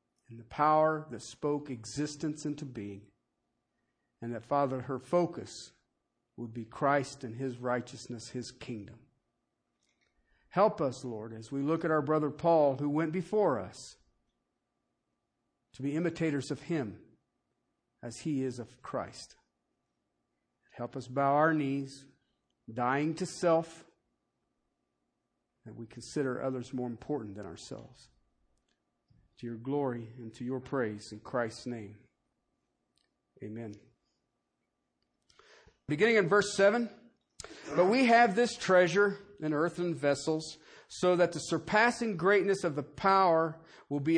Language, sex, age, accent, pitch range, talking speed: English, male, 50-69, American, 125-175 Hz, 125 wpm